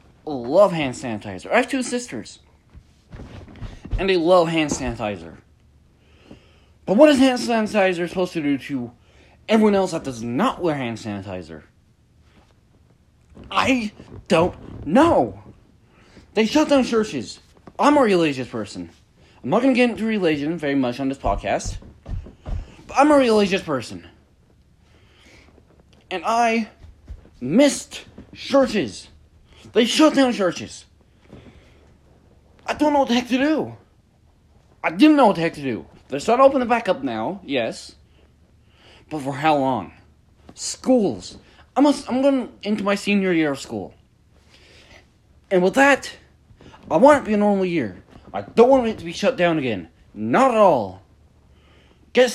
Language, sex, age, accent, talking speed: English, male, 30-49, American, 145 wpm